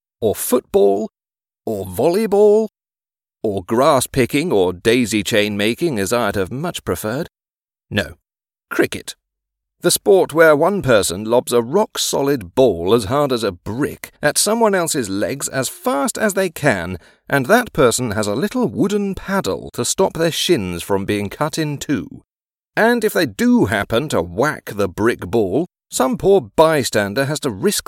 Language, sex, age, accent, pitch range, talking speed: English, male, 40-59, British, 130-215 Hz, 155 wpm